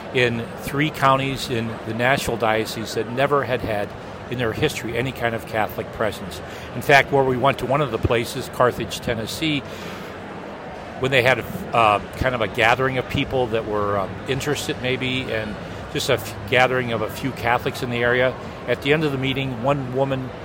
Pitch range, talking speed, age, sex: 115-145 Hz, 195 wpm, 50-69, male